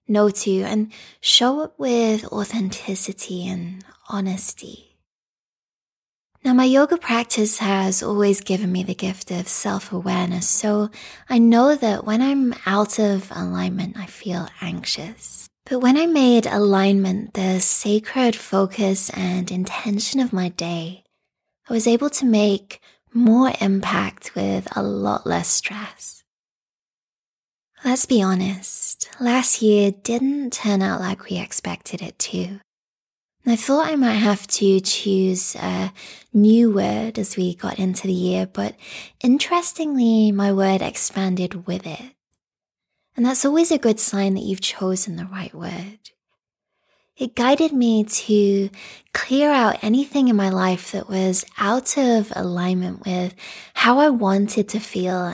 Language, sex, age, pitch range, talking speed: English, female, 20-39, 190-240 Hz, 140 wpm